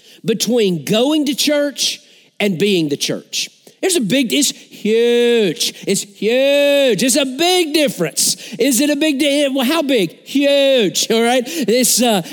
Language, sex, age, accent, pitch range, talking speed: English, male, 40-59, American, 205-275 Hz, 150 wpm